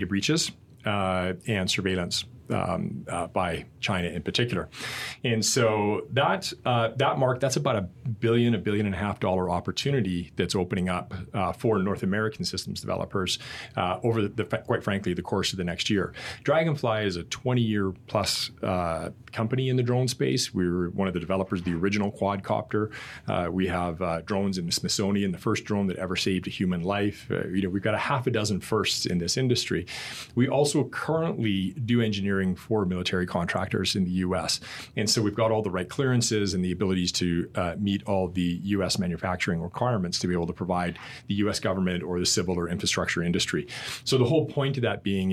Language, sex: English, male